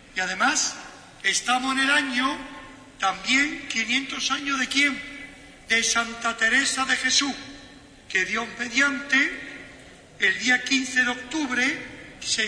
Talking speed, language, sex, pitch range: 120 wpm, Spanish, male, 225-270 Hz